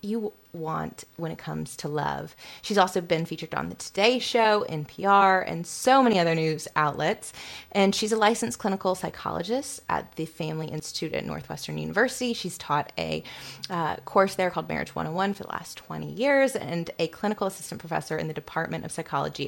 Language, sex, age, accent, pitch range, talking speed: English, female, 20-39, American, 160-205 Hz, 180 wpm